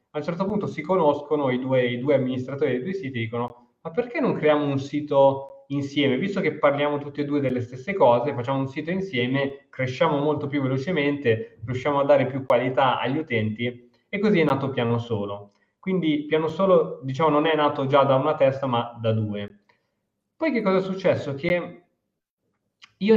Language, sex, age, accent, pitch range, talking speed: Italian, male, 20-39, native, 120-155 Hz, 190 wpm